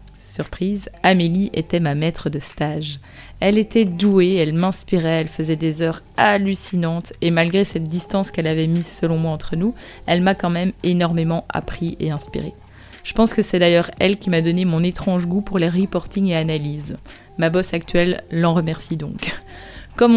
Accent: French